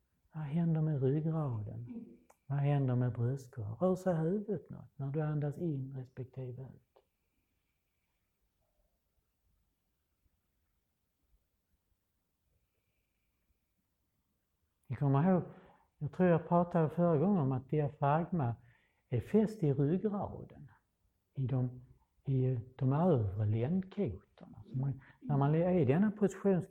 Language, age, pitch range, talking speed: Swedish, 60-79, 115-175 Hz, 100 wpm